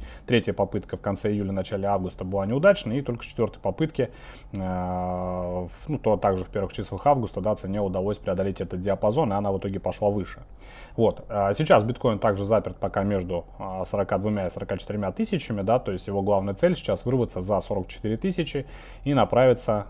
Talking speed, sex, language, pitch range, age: 170 wpm, male, Russian, 95-115 Hz, 30-49